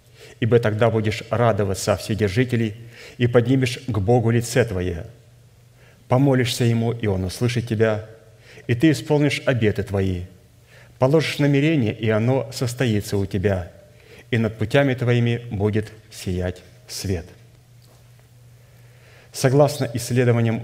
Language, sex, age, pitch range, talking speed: Russian, male, 30-49, 110-125 Hz, 110 wpm